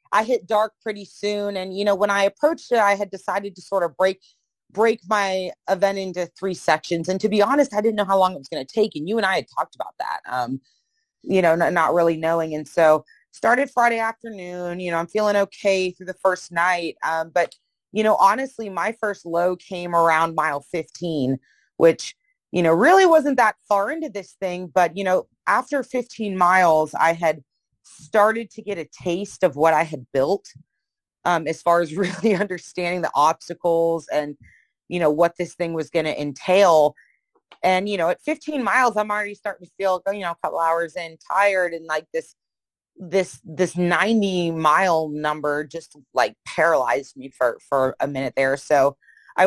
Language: English